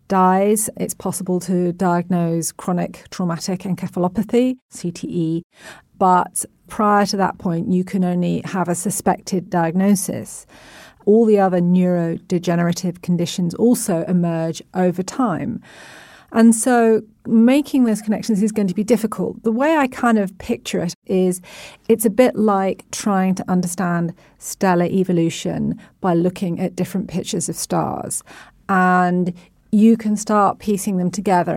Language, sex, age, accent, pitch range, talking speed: English, female, 40-59, British, 175-205 Hz, 135 wpm